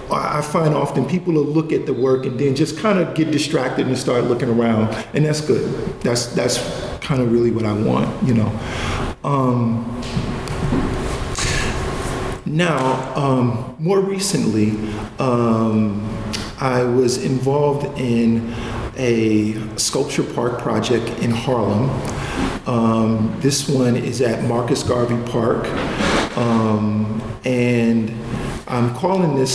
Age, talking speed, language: 50-69, 125 wpm, English